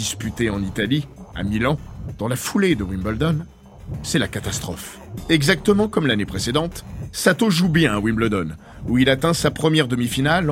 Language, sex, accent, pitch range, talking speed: French, male, French, 110-165 Hz, 160 wpm